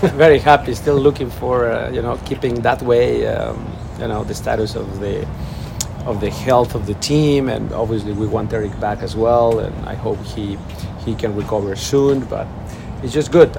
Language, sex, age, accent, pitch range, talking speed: English, male, 40-59, Mexican, 105-125 Hz, 195 wpm